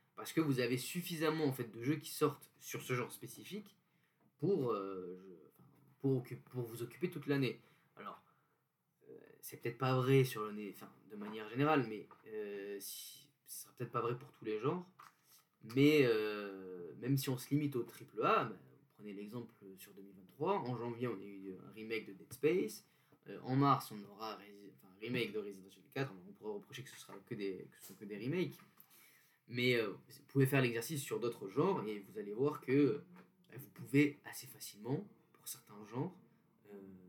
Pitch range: 105-145 Hz